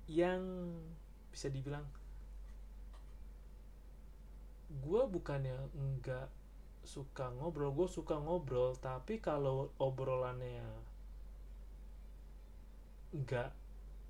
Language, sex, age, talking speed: Indonesian, male, 20-39, 65 wpm